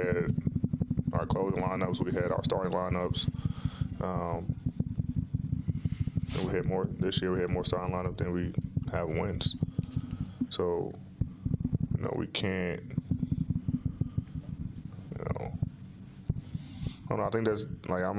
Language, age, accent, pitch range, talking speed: English, 10-29, American, 90-100 Hz, 130 wpm